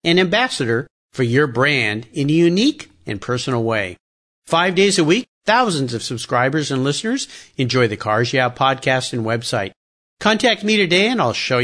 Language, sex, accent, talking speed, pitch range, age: English, male, American, 170 wpm, 120-195 Hz, 50-69